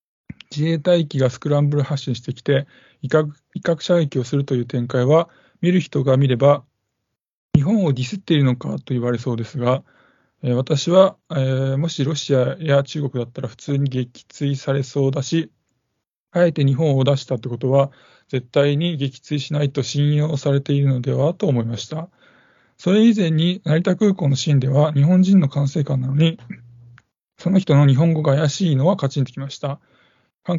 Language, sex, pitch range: Japanese, male, 130-155 Hz